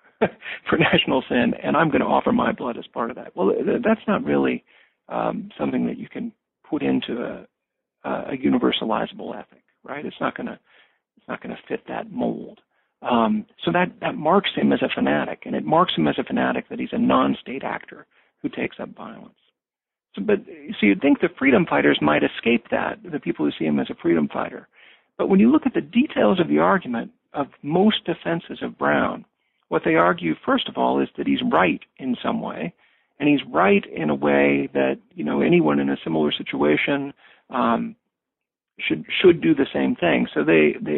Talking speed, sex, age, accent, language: 200 wpm, male, 50-69, American, English